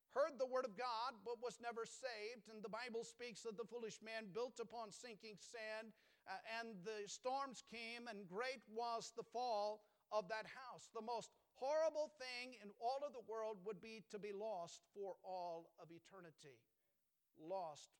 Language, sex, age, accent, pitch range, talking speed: English, male, 50-69, American, 160-225 Hz, 175 wpm